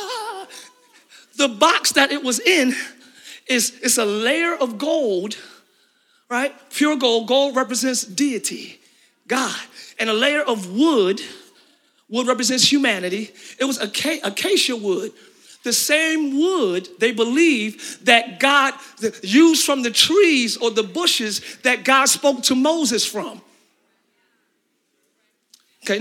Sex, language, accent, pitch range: male, English, American, 245-320 Hz